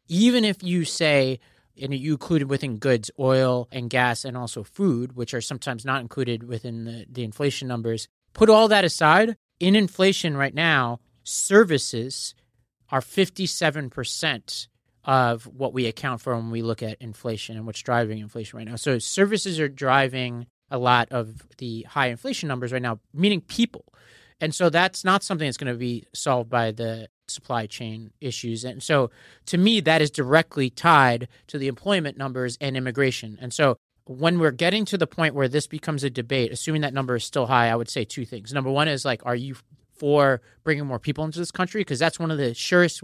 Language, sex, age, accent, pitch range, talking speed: English, male, 30-49, American, 120-155 Hz, 195 wpm